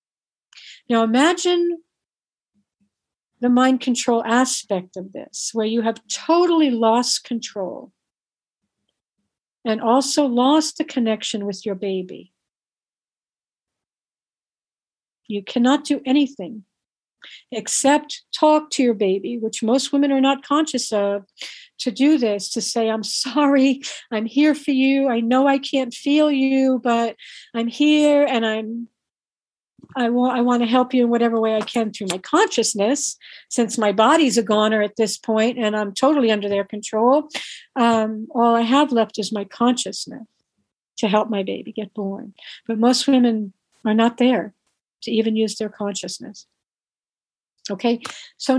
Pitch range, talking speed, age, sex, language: 220-275 Hz, 140 wpm, 60-79, female, English